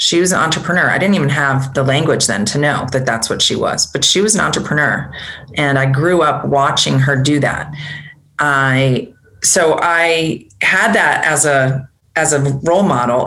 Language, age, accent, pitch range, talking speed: English, 30-49, American, 135-160 Hz, 190 wpm